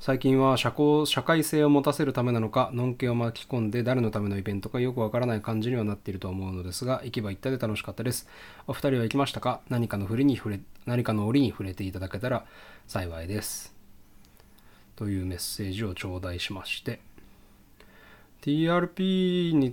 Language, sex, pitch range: Japanese, male, 105-145 Hz